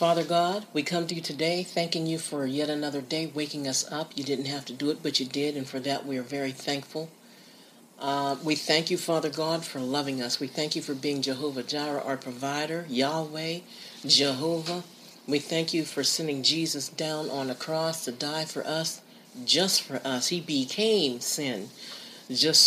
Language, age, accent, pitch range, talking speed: English, 50-69, American, 140-170 Hz, 195 wpm